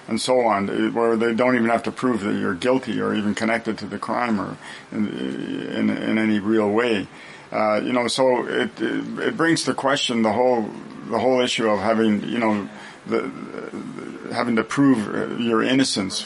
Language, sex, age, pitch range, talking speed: English, male, 40-59, 110-125 Hz, 190 wpm